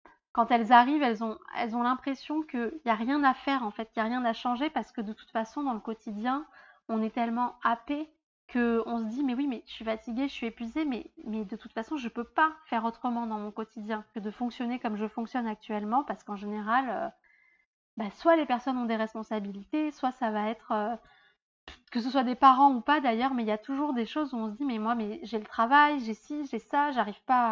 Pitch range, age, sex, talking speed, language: 220-265 Hz, 20-39, female, 250 wpm, French